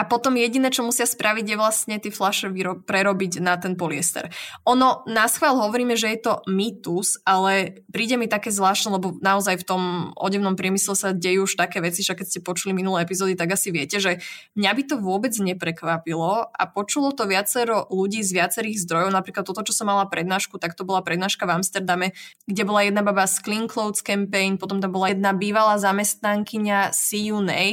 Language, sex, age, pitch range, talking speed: Slovak, female, 20-39, 190-225 Hz, 190 wpm